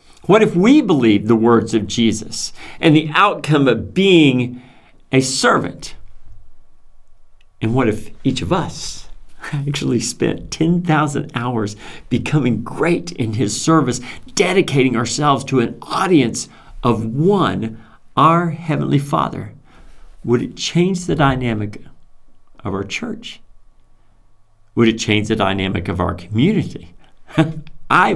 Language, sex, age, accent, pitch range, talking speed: English, male, 50-69, American, 115-190 Hz, 120 wpm